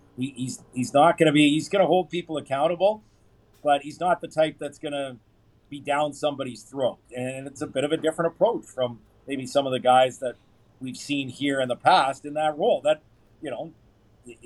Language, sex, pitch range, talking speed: English, male, 115-160 Hz, 210 wpm